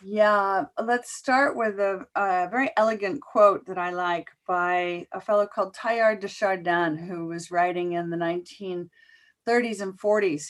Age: 40-59